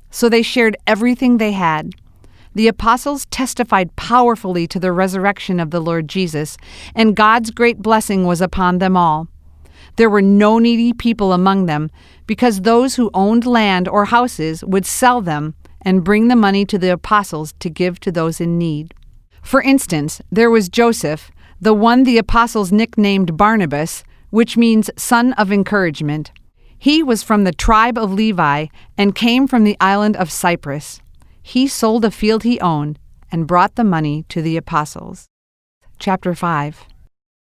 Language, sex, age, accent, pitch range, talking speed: English, female, 50-69, American, 170-230 Hz, 160 wpm